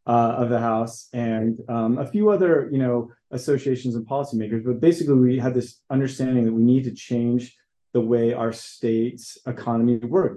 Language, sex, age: English, male, 30-49